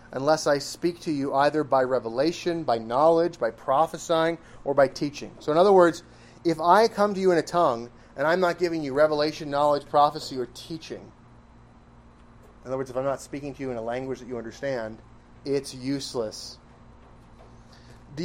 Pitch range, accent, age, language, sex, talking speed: 125-175 Hz, American, 30-49, English, male, 180 wpm